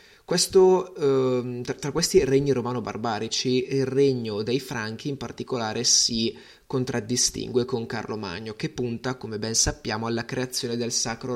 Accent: native